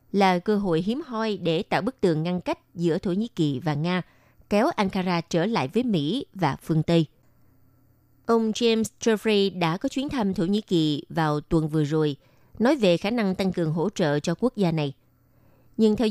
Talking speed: 200 wpm